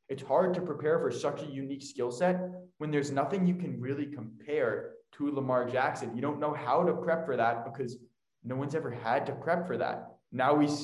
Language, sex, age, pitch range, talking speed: English, male, 20-39, 125-155 Hz, 215 wpm